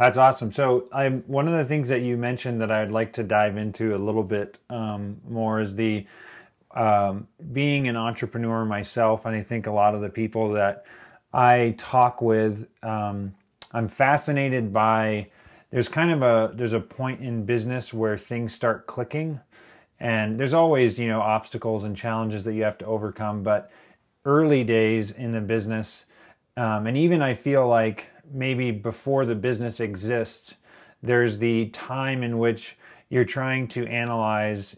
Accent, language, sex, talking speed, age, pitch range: American, English, male, 165 wpm, 30-49, 110-125 Hz